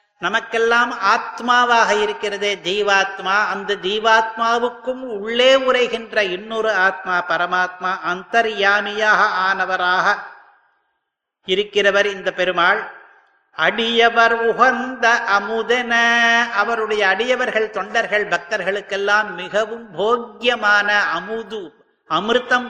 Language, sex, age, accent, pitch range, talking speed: Tamil, male, 50-69, native, 195-230 Hz, 70 wpm